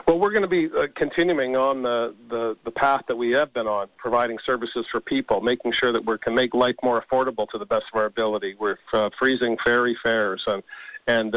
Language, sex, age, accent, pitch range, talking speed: English, male, 50-69, American, 115-135 Hz, 220 wpm